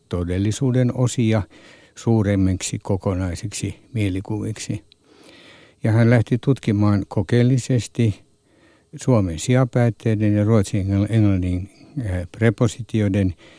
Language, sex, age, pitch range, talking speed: Finnish, male, 60-79, 95-115 Hz, 70 wpm